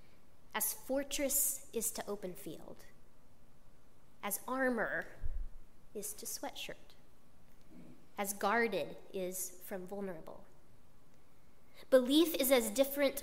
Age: 20-39